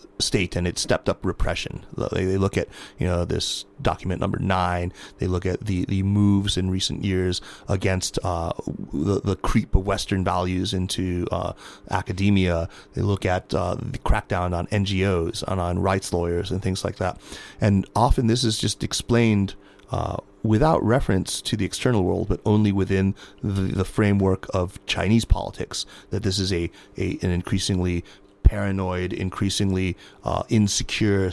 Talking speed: 165 wpm